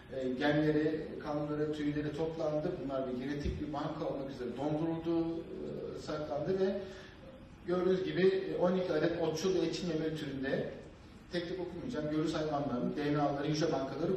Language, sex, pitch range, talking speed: Turkish, male, 150-180 Hz, 125 wpm